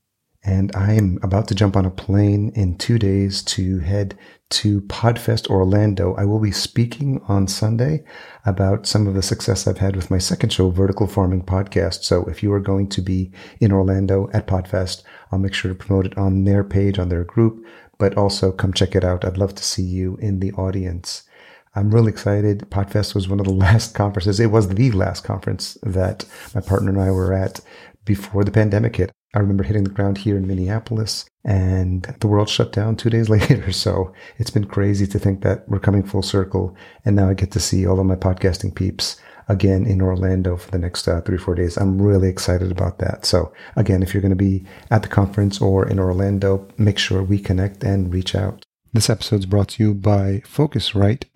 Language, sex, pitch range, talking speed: English, male, 95-105 Hz, 215 wpm